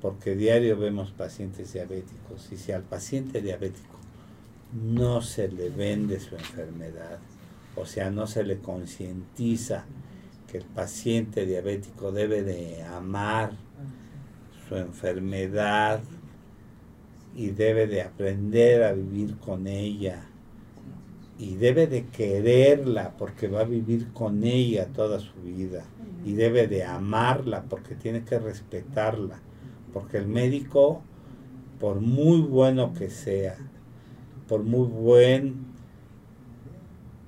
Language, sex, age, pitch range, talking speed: Spanish, male, 50-69, 100-125 Hz, 115 wpm